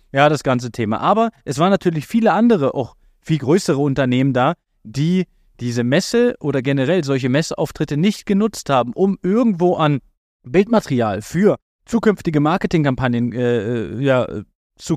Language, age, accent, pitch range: German, 30-49, German, 140-195 Hz